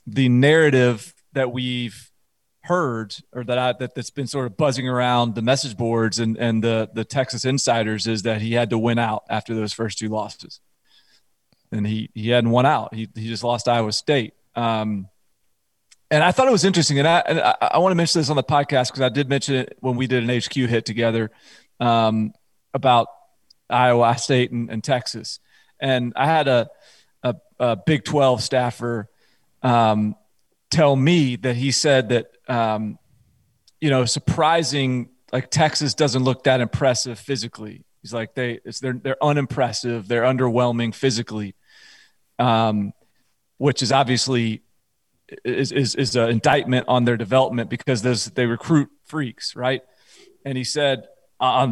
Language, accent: English, American